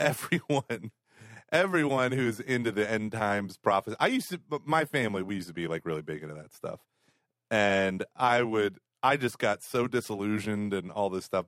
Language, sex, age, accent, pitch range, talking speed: English, male, 30-49, American, 100-130 Hz, 185 wpm